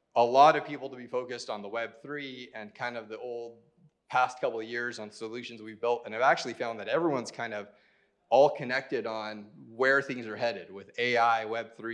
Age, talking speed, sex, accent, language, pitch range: 30-49, 205 wpm, male, American, English, 110-130 Hz